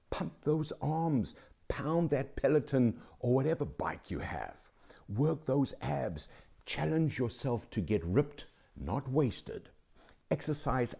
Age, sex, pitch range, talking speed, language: 60-79, male, 100-135 Hz, 120 wpm, English